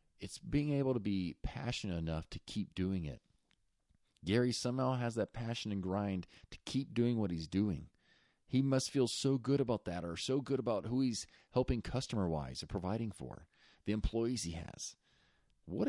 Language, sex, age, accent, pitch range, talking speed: English, male, 40-59, American, 90-130 Hz, 180 wpm